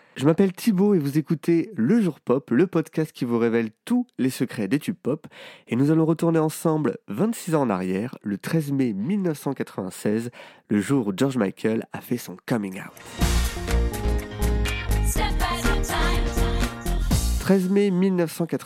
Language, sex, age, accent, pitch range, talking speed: French, male, 30-49, French, 110-170 Hz, 150 wpm